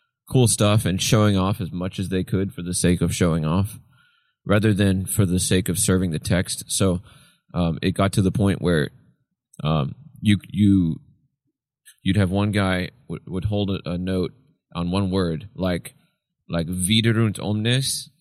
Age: 20-39